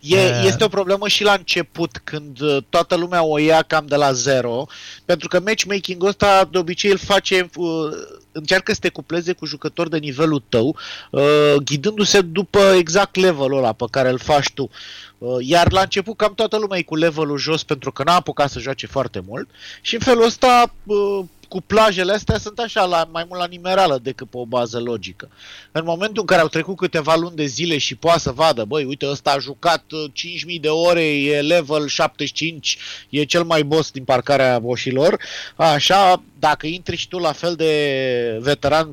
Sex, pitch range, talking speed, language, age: male, 145-190 Hz, 190 wpm, Romanian, 30-49